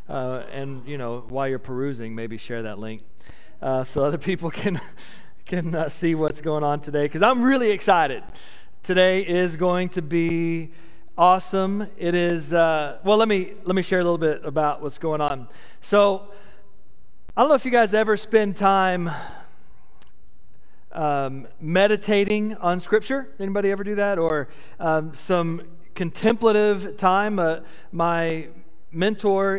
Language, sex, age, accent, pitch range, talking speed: English, male, 40-59, American, 150-190 Hz, 150 wpm